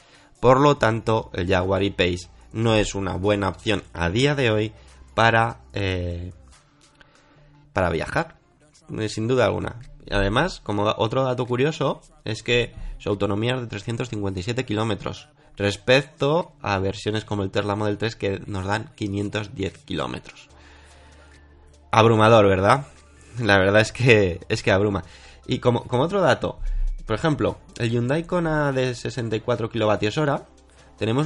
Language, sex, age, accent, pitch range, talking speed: Spanish, male, 20-39, Spanish, 95-125 Hz, 135 wpm